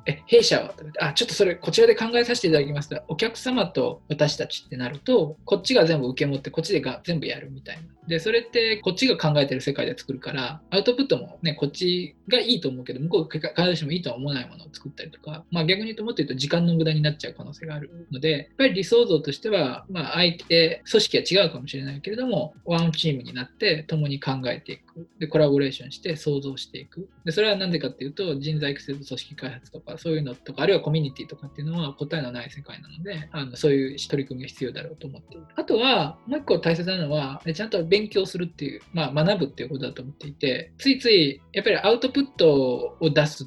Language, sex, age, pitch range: Japanese, male, 20-39, 140-200 Hz